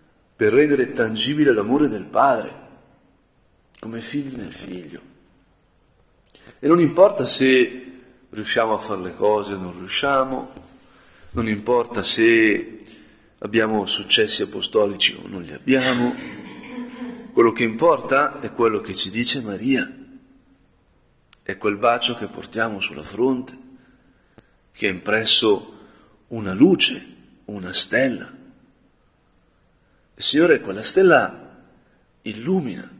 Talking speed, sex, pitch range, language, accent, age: 105 wpm, male, 115-185 Hz, Italian, native, 40-59